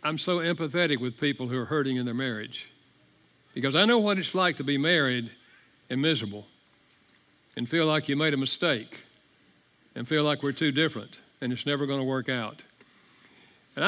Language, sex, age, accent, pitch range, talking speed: English, male, 60-79, American, 125-160 Hz, 185 wpm